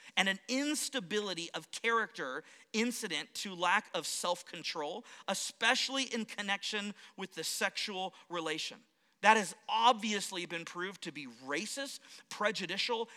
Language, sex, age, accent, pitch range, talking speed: English, male, 40-59, American, 190-250 Hz, 120 wpm